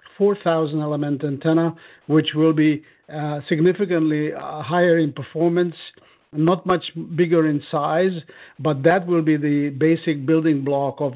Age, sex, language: 50-69, male, English